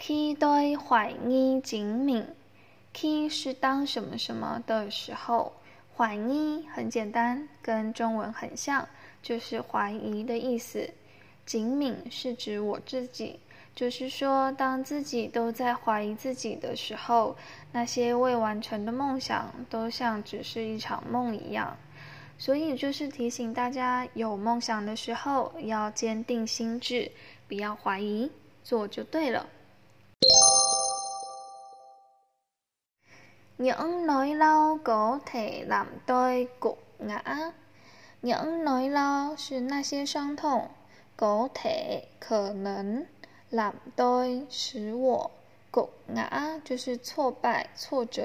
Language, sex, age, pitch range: Vietnamese, female, 10-29, 225-275 Hz